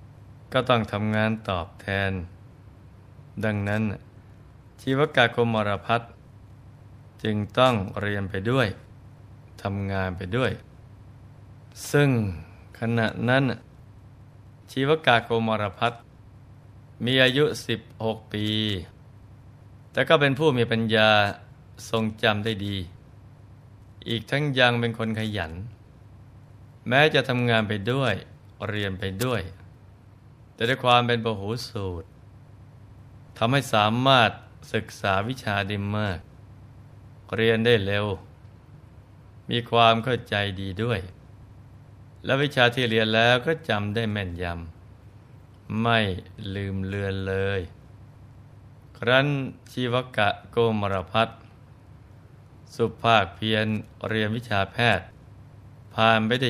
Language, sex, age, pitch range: Thai, male, 20-39, 105-120 Hz